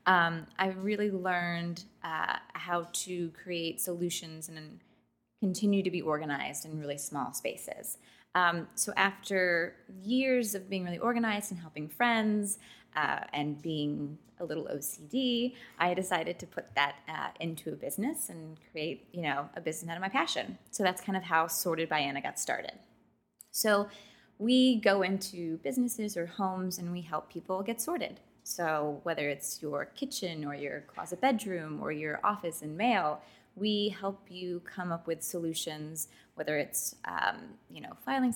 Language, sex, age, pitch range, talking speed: English, female, 20-39, 155-200 Hz, 165 wpm